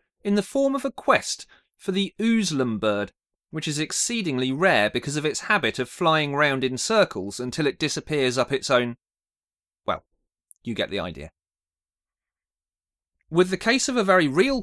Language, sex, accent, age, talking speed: English, male, British, 30-49, 170 wpm